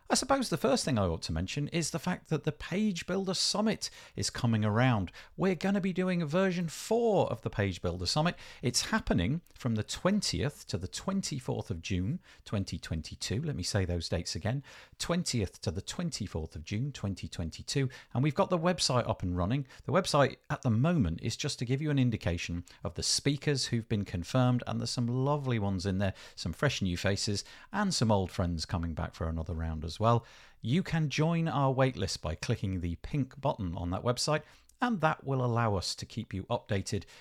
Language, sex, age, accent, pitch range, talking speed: English, male, 50-69, British, 95-150 Hz, 205 wpm